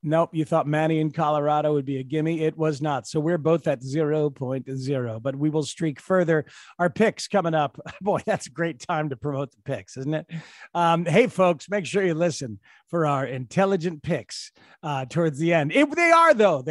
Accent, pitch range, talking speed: American, 150-215 Hz, 205 wpm